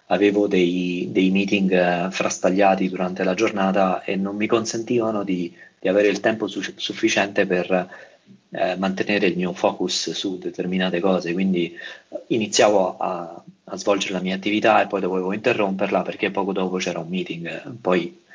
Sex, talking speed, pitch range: male, 155 wpm, 90-105 Hz